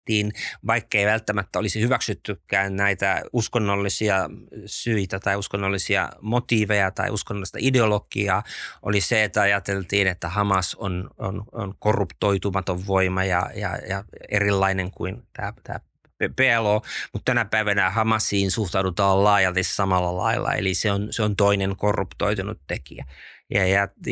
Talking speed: 125 wpm